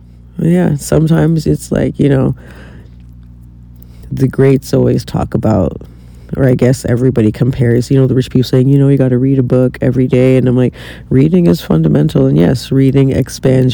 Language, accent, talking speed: English, American, 180 wpm